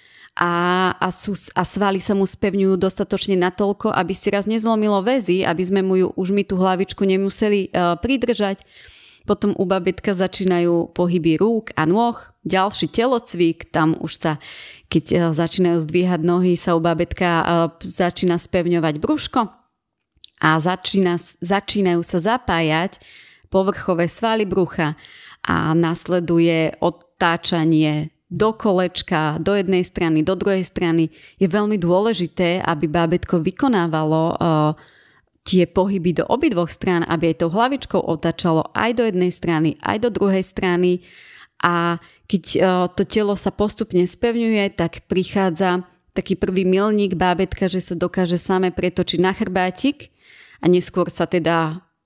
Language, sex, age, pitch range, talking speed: Slovak, female, 30-49, 170-195 Hz, 135 wpm